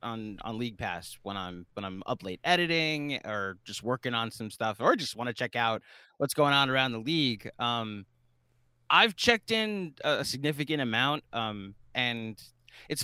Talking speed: 180 wpm